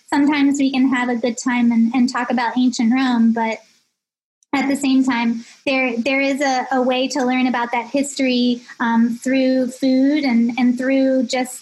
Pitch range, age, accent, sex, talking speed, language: 245-270 Hz, 20-39, American, female, 185 wpm, English